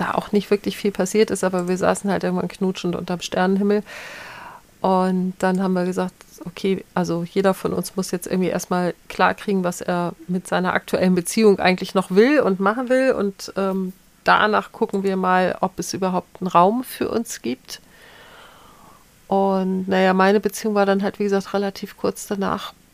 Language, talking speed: German, 180 wpm